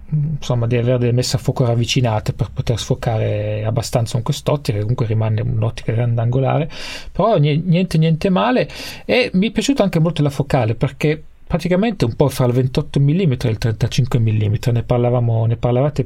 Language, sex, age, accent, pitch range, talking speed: English, male, 30-49, Italian, 120-150 Hz, 170 wpm